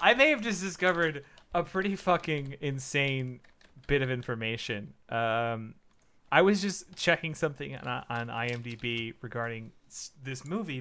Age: 30-49